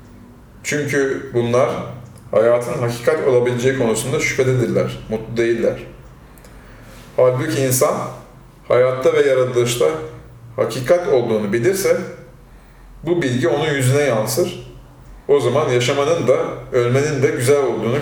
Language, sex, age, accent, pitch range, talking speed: Turkish, male, 40-59, native, 120-145 Hz, 100 wpm